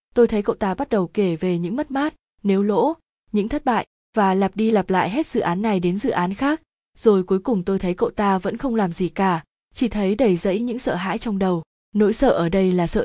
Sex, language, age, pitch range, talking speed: female, Vietnamese, 20-39, 180-225 Hz, 255 wpm